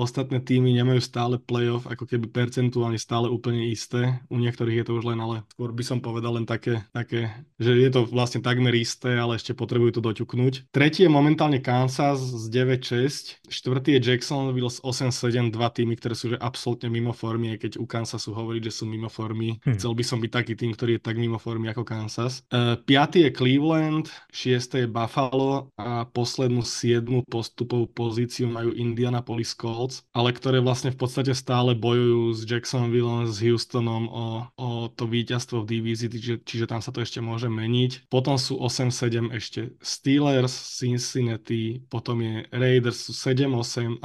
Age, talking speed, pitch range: 20-39, 175 wpm, 115-130 Hz